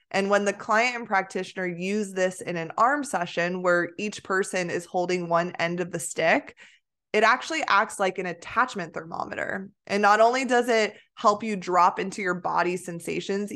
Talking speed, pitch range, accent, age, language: 180 wpm, 180-230 Hz, American, 20-39, English